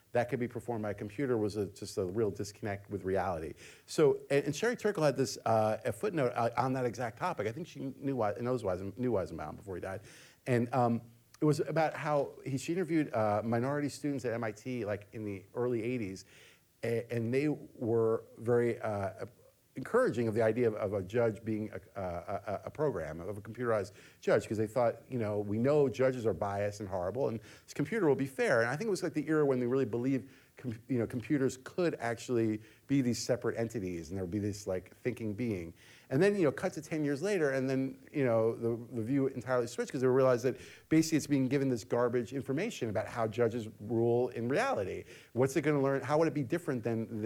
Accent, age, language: American, 50-69, English